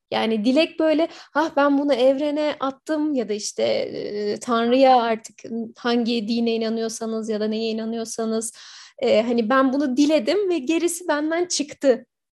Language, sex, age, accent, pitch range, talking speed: Turkish, female, 30-49, native, 230-295 Hz, 135 wpm